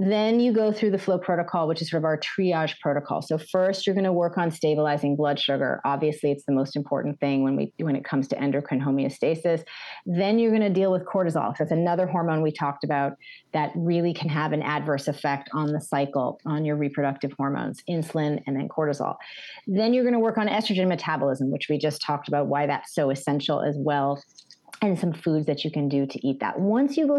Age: 30-49